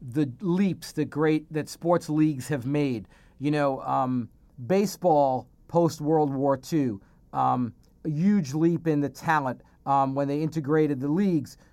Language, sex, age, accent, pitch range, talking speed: English, male, 40-59, American, 135-165 Hz, 150 wpm